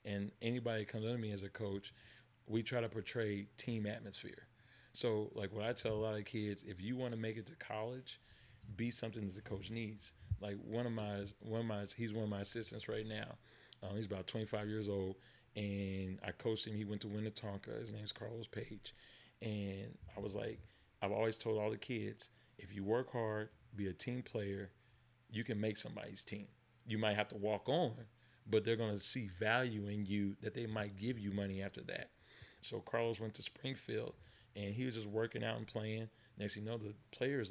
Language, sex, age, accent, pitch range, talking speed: English, male, 40-59, American, 105-120 Hz, 215 wpm